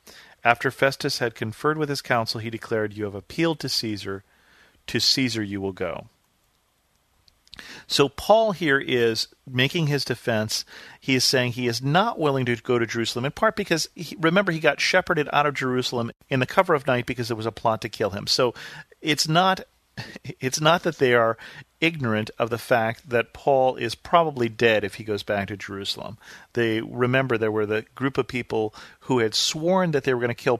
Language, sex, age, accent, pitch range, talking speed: English, male, 40-59, American, 110-140 Hz, 195 wpm